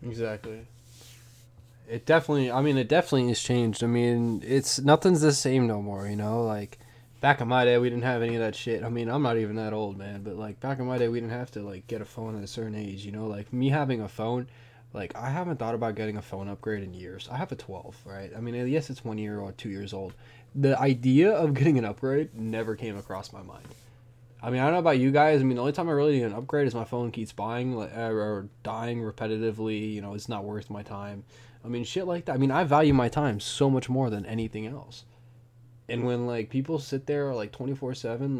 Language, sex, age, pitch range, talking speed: English, male, 10-29, 110-135 Hz, 250 wpm